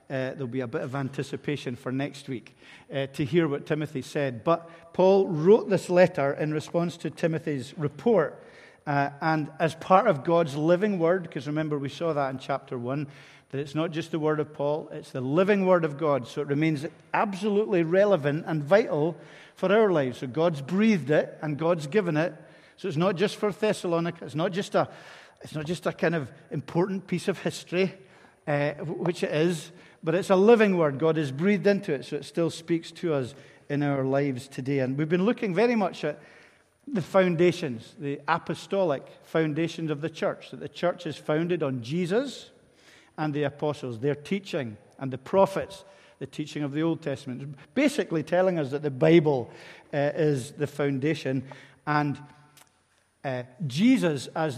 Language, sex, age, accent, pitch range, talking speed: English, male, 50-69, British, 145-180 Hz, 185 wpm